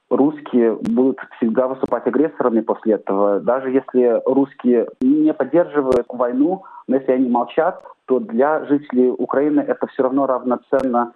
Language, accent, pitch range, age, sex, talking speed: Russian, native, 120-145 Hz, 20-39, male, 130 wpm